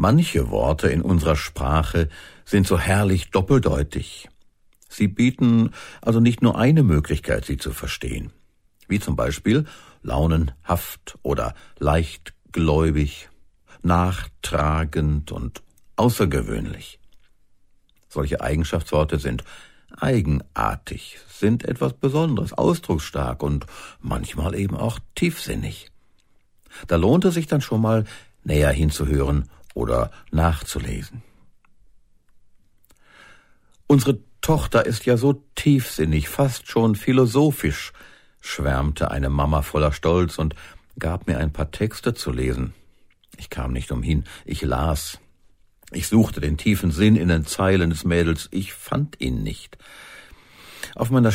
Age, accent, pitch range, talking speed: 60-79, German, 75-110 Hz, 110 wpm